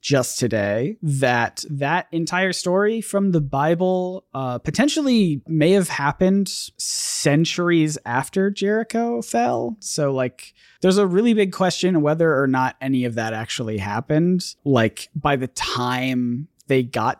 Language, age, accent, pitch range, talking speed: English, 20-39, American, 125-175 Hz, 135 wpm